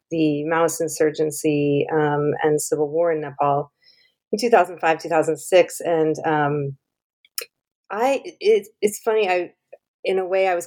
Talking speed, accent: 135 wpm, American